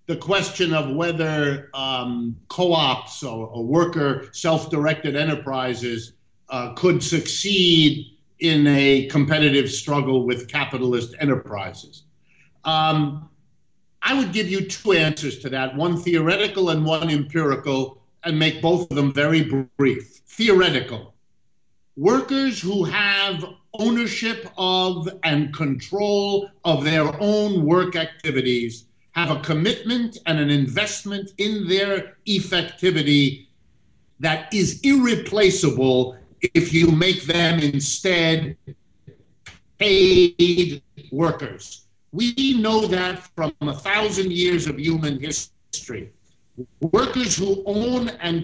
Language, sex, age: English, male, 50-69